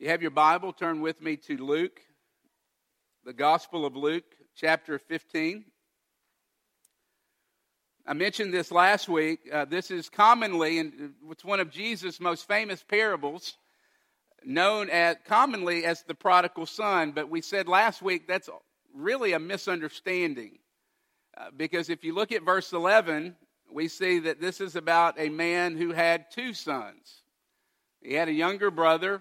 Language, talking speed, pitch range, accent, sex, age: English, 150 wpm, 155-185 Hz, American, male, 50-69